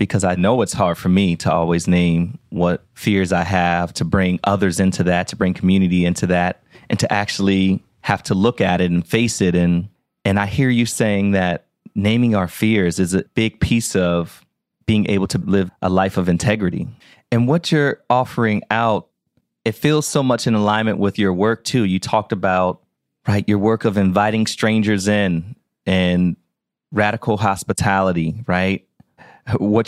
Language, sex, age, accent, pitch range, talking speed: English, male, 30-49, American, 95-120 Hz, 175 wpm